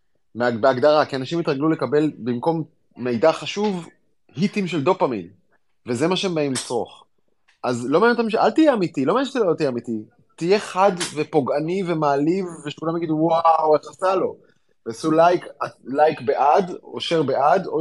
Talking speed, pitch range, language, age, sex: 160 wpm, 135-185 Hz, Hebrew, 20-39, male